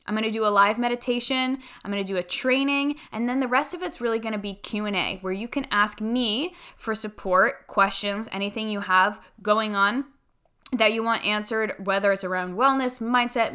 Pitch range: 195-245 Hz